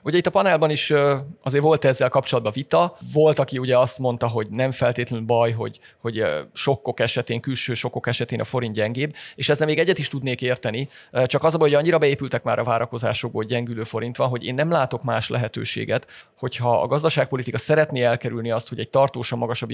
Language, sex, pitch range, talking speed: Hungarian, male, 115-140 Hz, 195 wpm